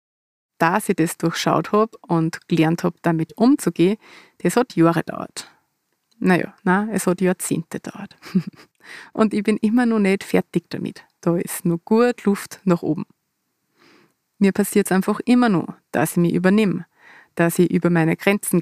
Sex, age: female, 30-49